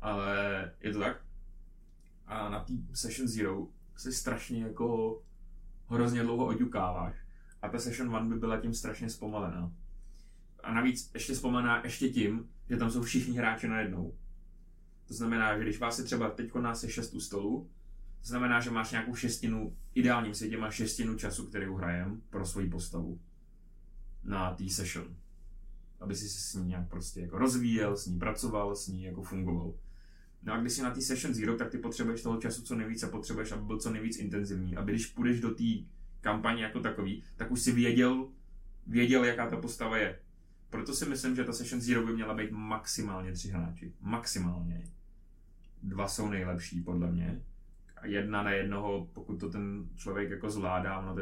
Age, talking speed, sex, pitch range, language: 20-39, 180 wpm, male, 85-115 Hz, Czech